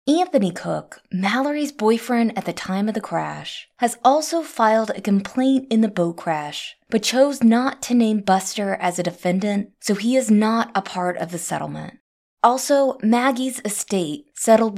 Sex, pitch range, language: female, 180-240 Hz, English